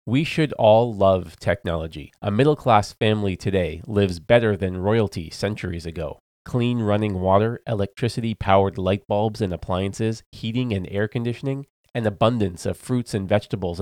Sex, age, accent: male, 30-49, American